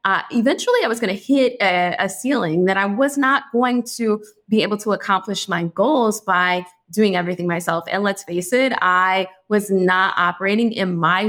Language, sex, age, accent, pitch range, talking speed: English, female, 20-39, American, 180-220 Hz, 190 wpm